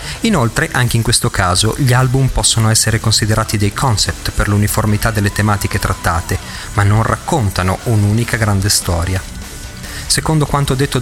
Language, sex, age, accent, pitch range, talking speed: Italian, male, 40-59, native, 105-130 Hz, 140 wpm